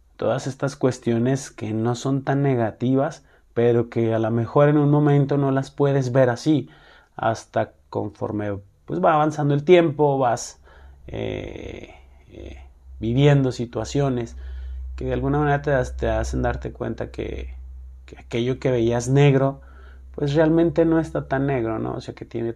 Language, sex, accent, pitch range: Spanish, male, Mexican, 105-145 Hz